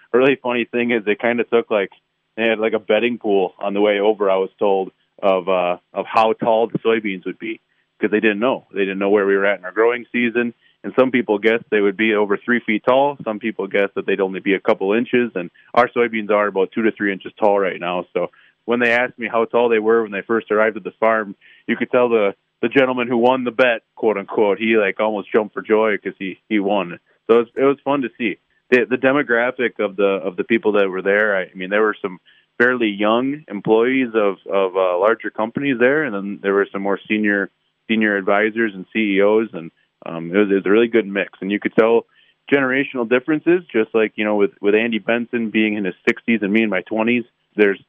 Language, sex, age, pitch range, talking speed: English, male, 30-49, 100-120 Hz, 245 wpm